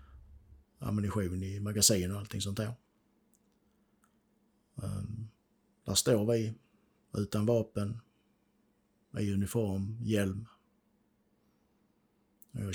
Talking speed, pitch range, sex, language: 75 wpm, 95-115 Hz, male, Swedish